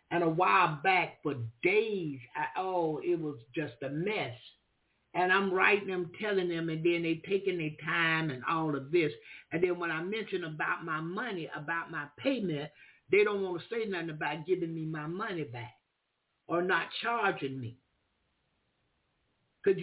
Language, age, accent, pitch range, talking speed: English, 60-79, American, 155-200 Hz, 170 wpm